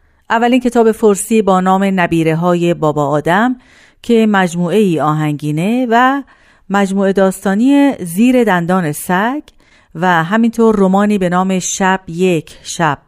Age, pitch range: 40-59, 175-240 Hz